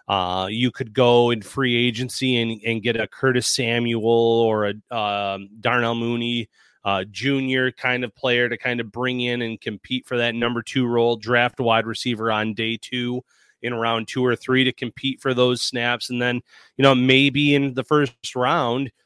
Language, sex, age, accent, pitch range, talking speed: English, male, 30-49, American, 115-130 Hz, 190 wpm